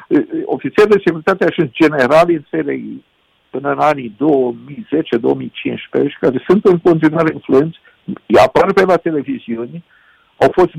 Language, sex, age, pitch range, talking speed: Romanian, male, 50-69, 135-170 Hz, 130 wpm